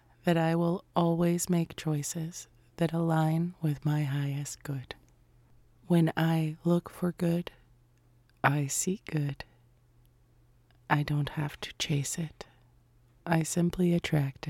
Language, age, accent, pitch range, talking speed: English, 30-49, American, 120-165 Hz, 120 wpm